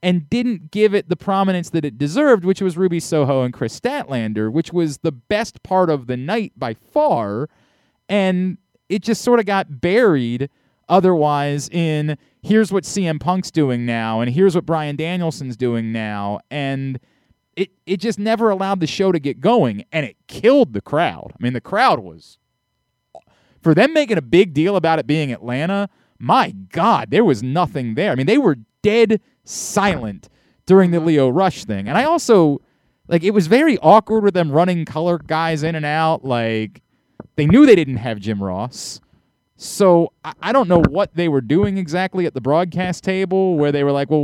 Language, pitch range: English, 140-195 Hz